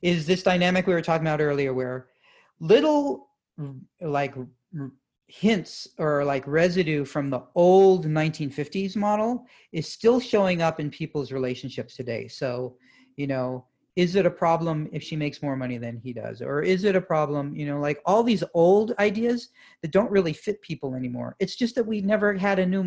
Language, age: English, 40-59